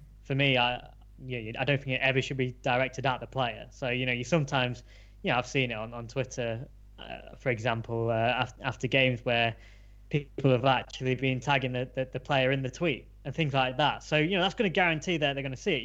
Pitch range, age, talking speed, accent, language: 120-145 Hz, 10-29, 250 wpm, British, English